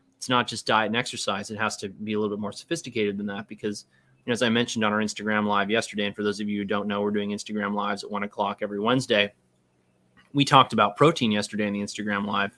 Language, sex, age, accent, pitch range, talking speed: English, male, 30-49, American, 105-130 Hz, 260 wpm